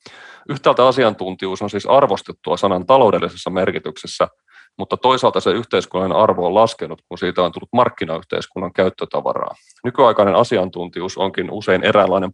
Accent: native